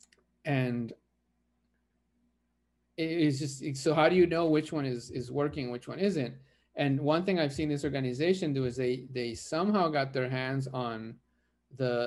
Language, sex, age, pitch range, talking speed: English, male, 40-59, 115-145 Hz, 165 wpm